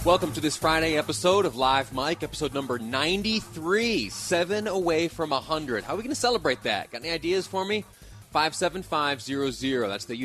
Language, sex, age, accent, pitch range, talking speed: English, male, 30-49, American, 115-150 Hz, 195 wpm